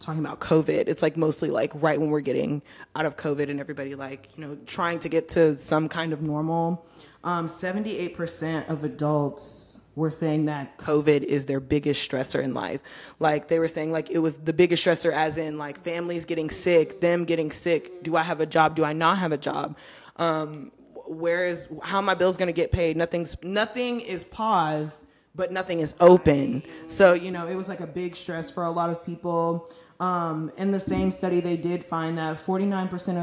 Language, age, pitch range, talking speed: English, 20-39, 155-175 Hz, 200 wpm